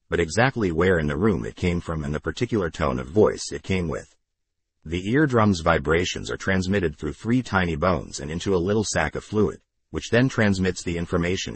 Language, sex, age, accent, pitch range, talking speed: English, male, 50-69, American, 80-105 Hz, 200 wpm